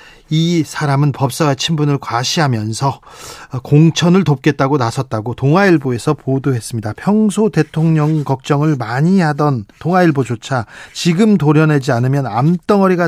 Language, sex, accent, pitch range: Korean, male, native, 135-175 Hz